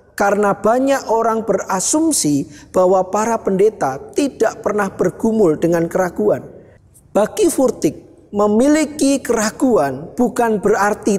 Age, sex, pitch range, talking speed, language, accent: 40-59, male, 195-245 Hz, 95 wpm, Indonesian, native